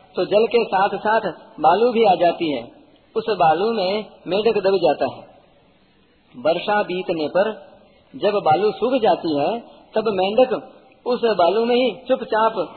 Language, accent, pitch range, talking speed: Hindi, native, 180-225 Hz, 150 wpm